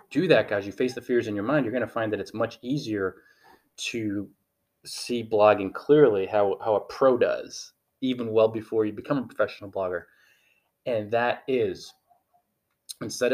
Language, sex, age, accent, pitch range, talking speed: English, male, 20-39, American, 105-145 Hz, 175 wpm